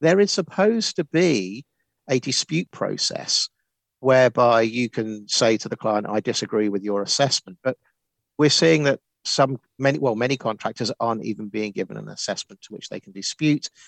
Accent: British